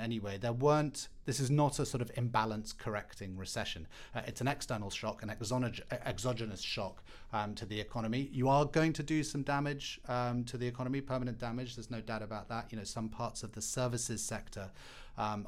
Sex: male